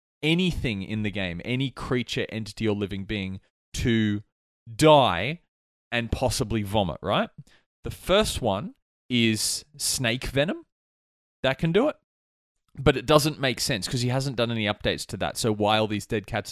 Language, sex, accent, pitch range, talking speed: English, male, Australian, 105-150 Hz, 160 wpm